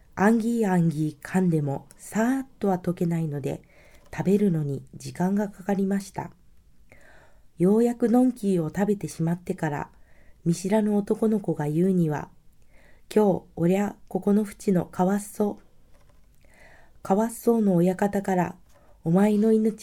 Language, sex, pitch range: Japanese, female, 165-210 Hz